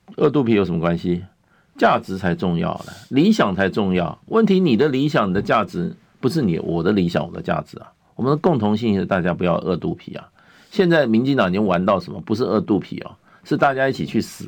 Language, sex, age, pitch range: Chinese, male, 50-69, 95-135 Hz